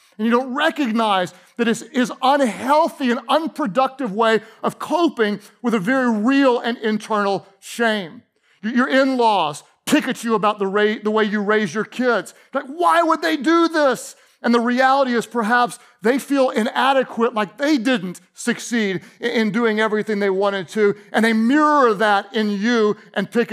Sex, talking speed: male, 165 wpm